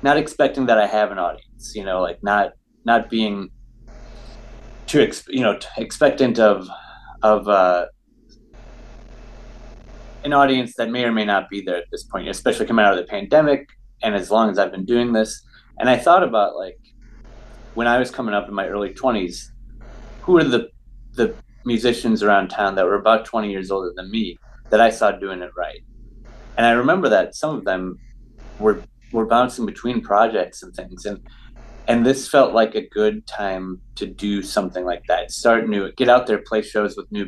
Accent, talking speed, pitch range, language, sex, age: American, 190 wpm, 100-120 Hz, English, male, 30-49